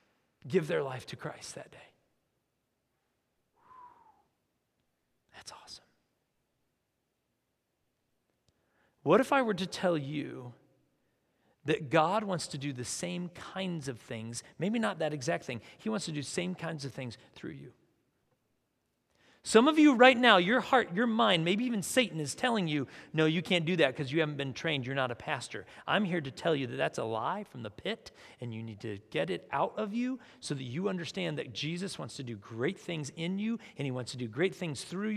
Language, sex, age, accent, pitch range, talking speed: English, male, 40-59, American, 135-205 Hz, 195 wpm